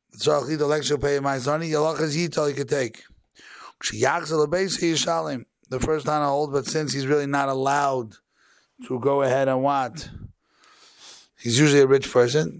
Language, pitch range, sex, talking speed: English, 130-150 Hz, male, 115 wpm